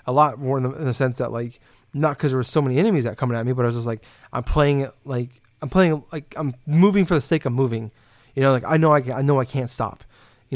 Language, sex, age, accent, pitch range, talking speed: English, male, 20-39, American, 120-140 Hz, 295 wpm